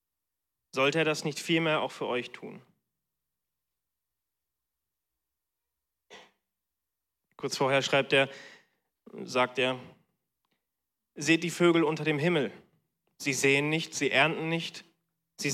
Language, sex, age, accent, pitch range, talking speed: German, male, 30-49, German, 115-165 Hz, 110 wpm